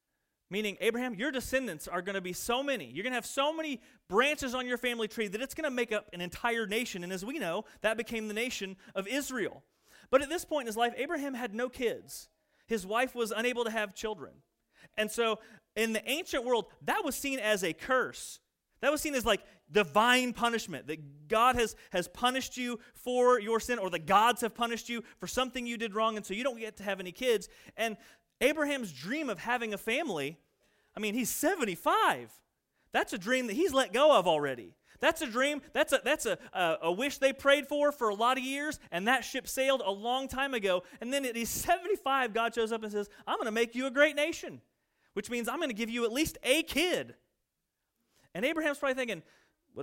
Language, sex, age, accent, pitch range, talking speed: English, male, 30-49, American, 215-270 Hz, 225 wpm